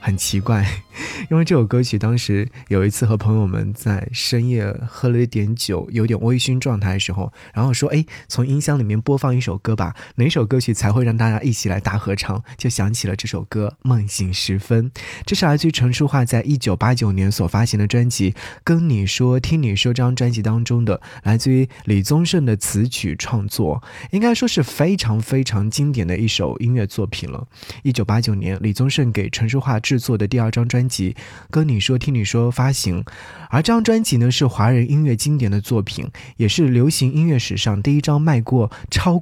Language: Chinese